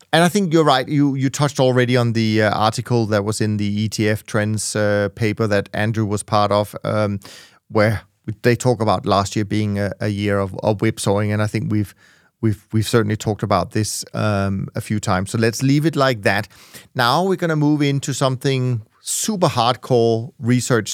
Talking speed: 205 wpm